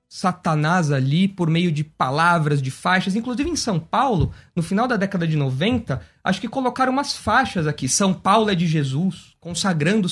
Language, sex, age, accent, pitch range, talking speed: Portuguese, male, 20-39, Brazilian, 165-235 Hz, 180 wpm